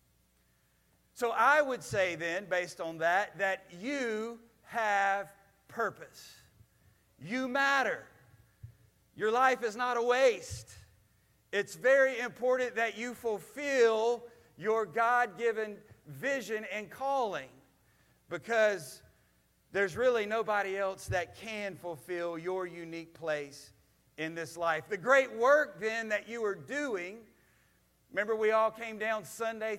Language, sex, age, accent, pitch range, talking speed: English, male, 40-59, American, 175-225 Hz, 120 wpm